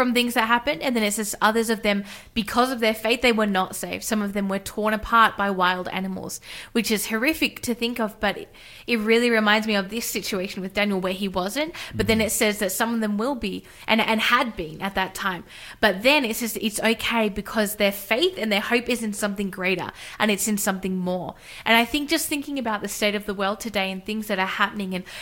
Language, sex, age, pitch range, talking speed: English, female, 20-39, 195-230 Hz, 245 wpm